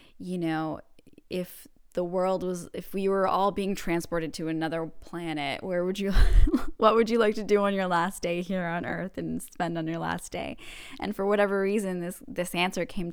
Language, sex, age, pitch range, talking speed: English, female, 10-29, 165-195 Hz, 205 wpm